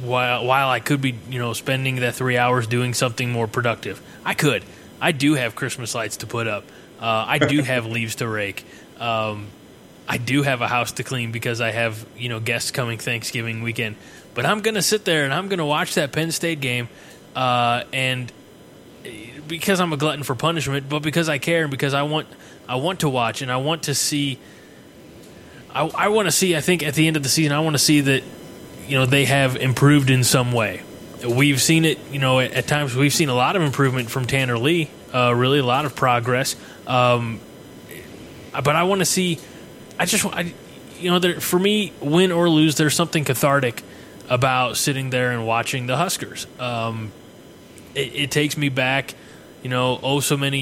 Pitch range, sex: 125-150 Hz, male